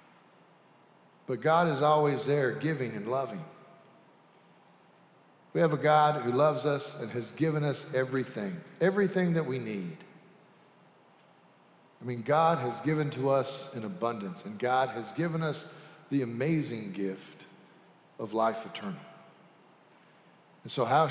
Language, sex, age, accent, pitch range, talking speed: English, male, 50-69, American, 145-200 Hz, 135 wpm